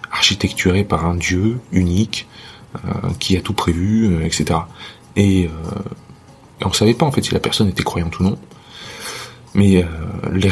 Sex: male